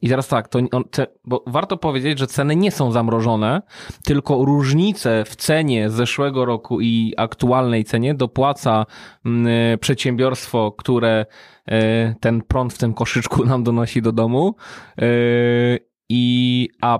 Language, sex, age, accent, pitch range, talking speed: Polish, male, 20-39, native, 120-145 Hz, 120 wpm